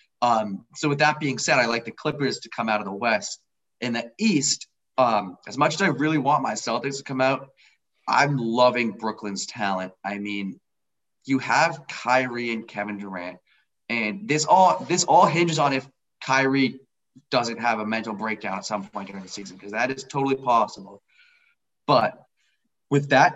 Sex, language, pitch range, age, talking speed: male, English, 110-150 Hz, 20-39, 180 wpm